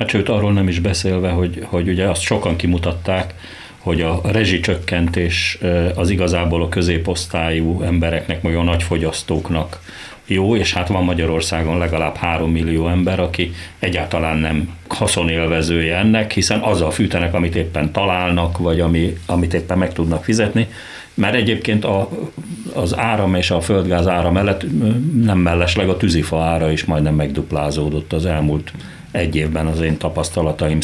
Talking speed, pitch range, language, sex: 145 wpm, 80-95 Hz, Hungarian, male